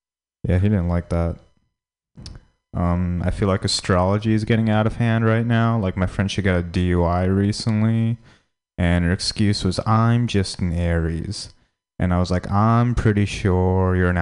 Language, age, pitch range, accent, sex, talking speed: English, 20-39, 85-105 Hz, American, male, 175 wpm